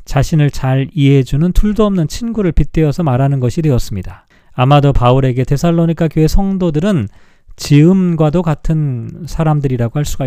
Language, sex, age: Korean, male, 40-59